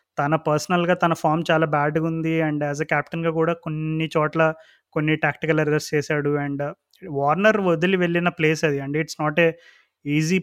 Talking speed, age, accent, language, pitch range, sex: 160 wpm, 20-39, native, Telugu, 155-170 Hz, male